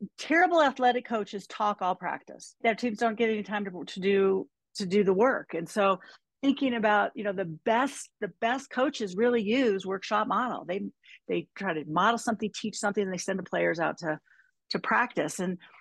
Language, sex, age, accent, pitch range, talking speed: English, female, 40-59, American, 185-240 Hz, 195 wpm